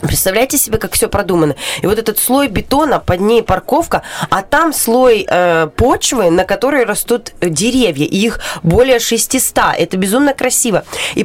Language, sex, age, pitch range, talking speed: Russian, female, 20-39, 190-245 Hz, 155 wpm